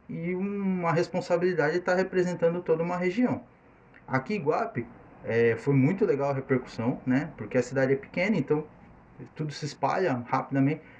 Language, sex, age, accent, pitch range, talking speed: Portuguese, male, 20-39, Brazilian, 125-175 Hz, 155 wpm